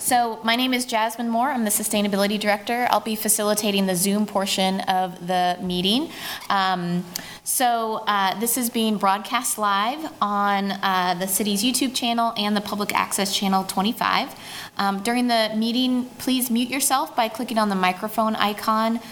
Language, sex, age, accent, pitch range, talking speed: English, female, 20-39, American, 190-225 Hz, 165 wpm